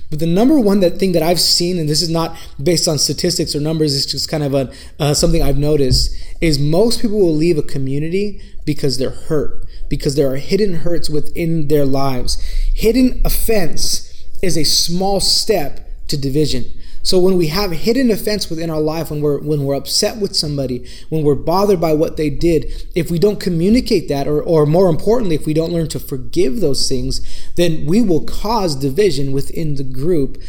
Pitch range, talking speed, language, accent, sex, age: 145-195 Hz, 195 wpm, English, American, male, 20-39